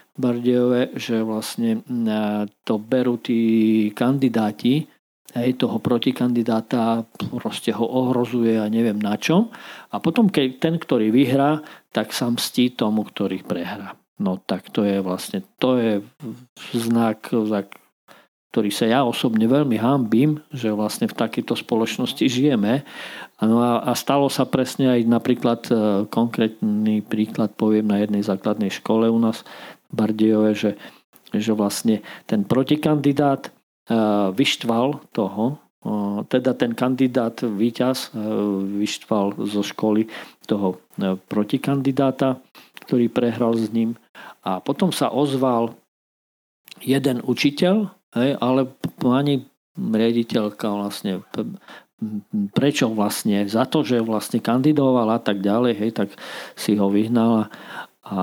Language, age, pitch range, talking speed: Slovak, 50-69, 105-130 Hz, 115 wpm